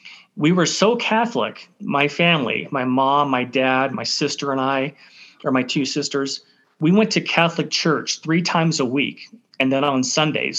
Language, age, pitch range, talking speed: English, 30-49, 140-180 Hz, 175 wpm